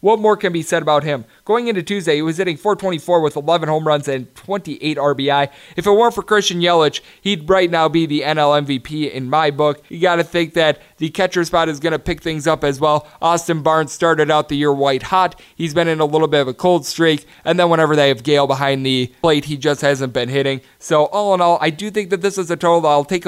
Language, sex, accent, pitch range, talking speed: English, male, American, 145-175 Hz, 260 wpm